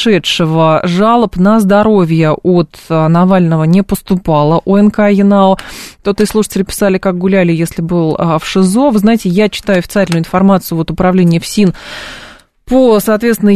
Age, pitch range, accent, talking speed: 20-39, 170-205 Hz, native, 140 wpm